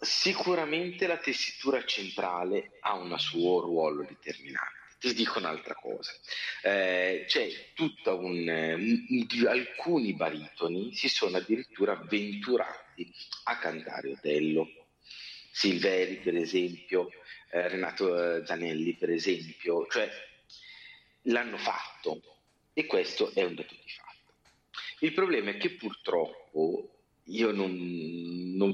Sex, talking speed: male, 115 wpm